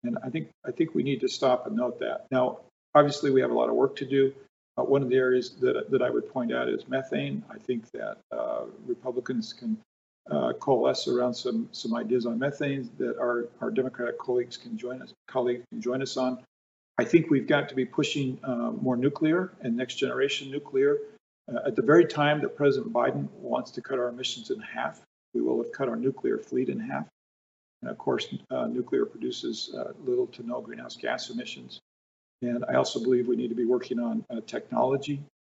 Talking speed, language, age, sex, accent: 210 wpm, English, 50-69, male, American